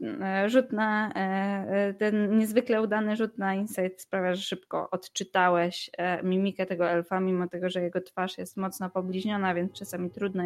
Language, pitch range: Polish, 180-215 Hz